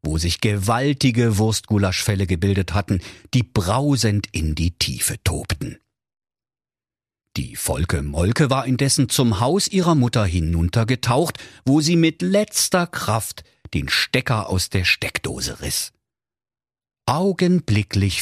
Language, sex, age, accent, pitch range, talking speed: German, male, 50-69, German, 95-135 Hz, 110 wpm